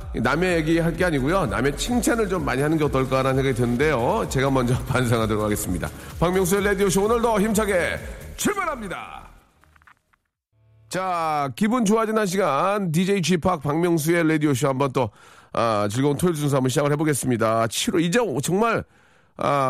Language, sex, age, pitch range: Korean, male, 40-59, 115-170 Hz